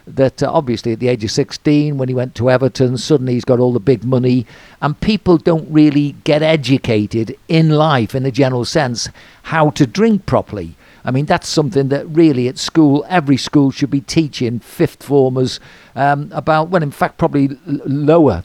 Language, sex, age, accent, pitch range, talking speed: English, male, 50-69, British, 135-170 Hz, 190 wpm